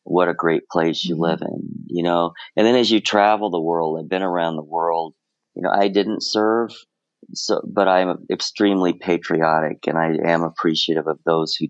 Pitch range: 80-95 Hz